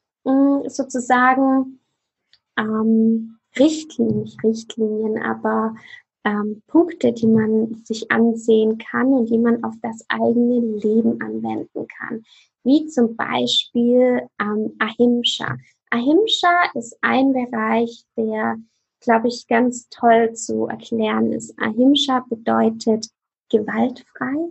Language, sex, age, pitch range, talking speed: German, female, 20-39, 220-265 Hz, 105 wpm